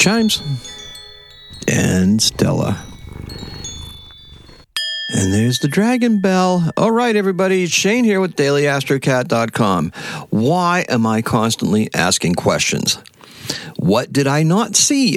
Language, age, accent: English, 50-69, American